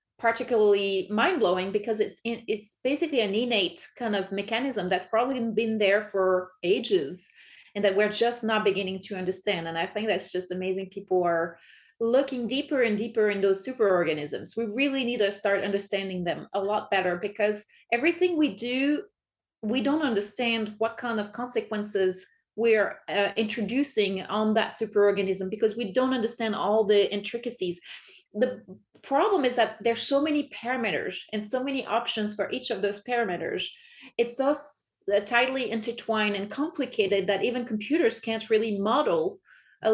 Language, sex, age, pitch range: English, female, 30-49, 200-240 Hz